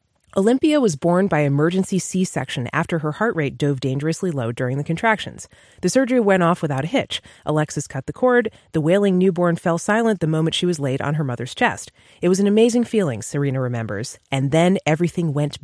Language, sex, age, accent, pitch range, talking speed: English, female, 30-49, American, 150-215 Hz, 200 wpm